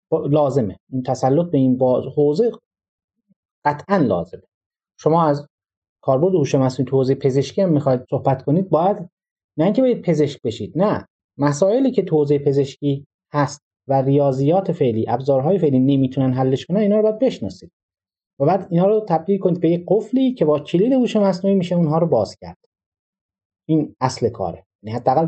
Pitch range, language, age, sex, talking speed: 115-170 Hz, Persian, 30-49, male, 155 wpm